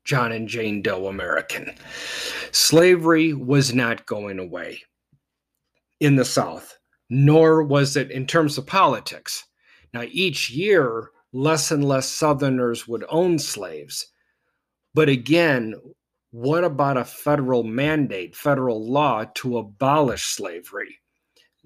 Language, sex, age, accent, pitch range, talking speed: English, male, 40-59, American, 125-150 Hz, 115 wpm